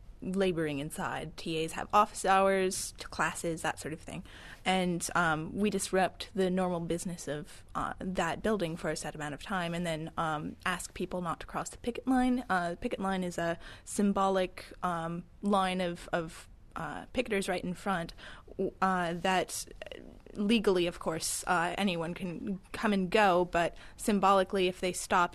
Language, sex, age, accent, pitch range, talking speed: English, female, 20-39, American, 170-200 Hz, 170 wpm